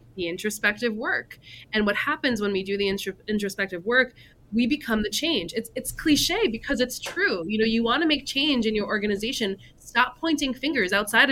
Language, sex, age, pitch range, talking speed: English, female, 20-39, 205-270 Hz, 190 wpm